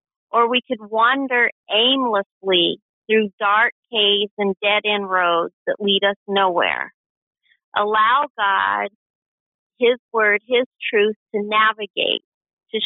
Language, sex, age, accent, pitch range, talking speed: English, female, 40-59, American, 200-235 Hz, 110 wpm